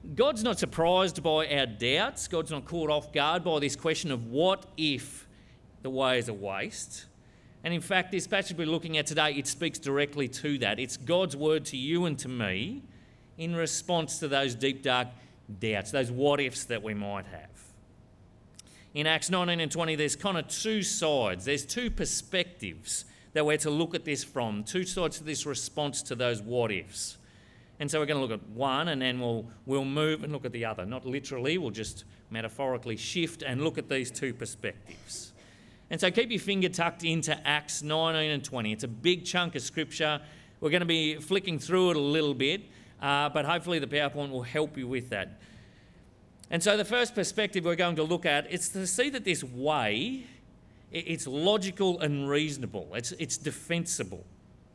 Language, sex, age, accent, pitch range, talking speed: English, male, 40-59, Australian, 125-165 Hz, 190 wpm